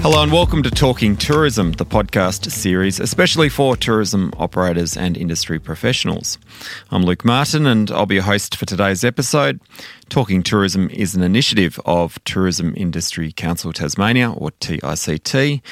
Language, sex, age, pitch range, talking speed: English, male, 30-49, 85-115 Hz, 150 wpm